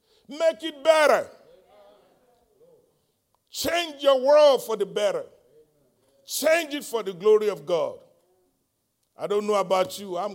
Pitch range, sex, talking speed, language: 185-280 Hz, male, 130 wpm, English